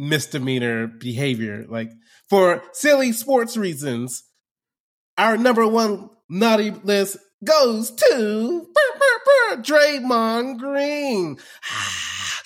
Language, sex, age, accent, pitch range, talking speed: English, male, 20-39, American, 175-235 Hz, 75 wpm